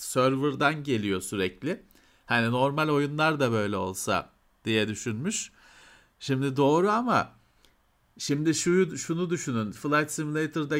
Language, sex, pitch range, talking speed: Turkish, male, 115-165 Hz, 105 wpm